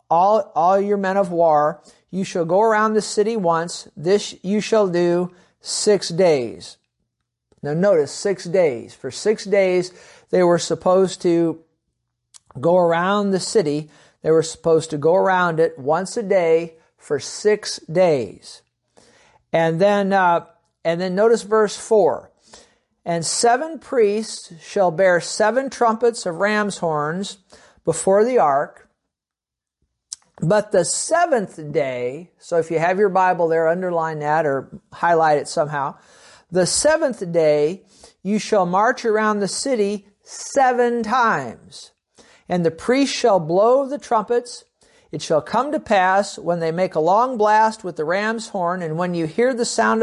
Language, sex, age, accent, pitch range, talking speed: English, male, 50-69, American, 165-215 Hz, 150 wpm